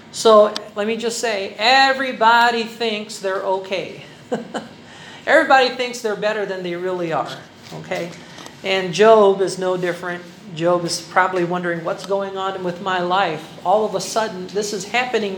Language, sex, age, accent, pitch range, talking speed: Filipino, male, 50-69, American, 185-230 Hz, 155 wpm